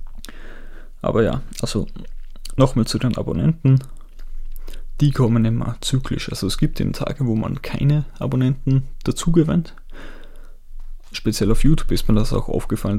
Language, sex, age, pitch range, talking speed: German, male, 20-39, 115-135 Hz, 135 wpm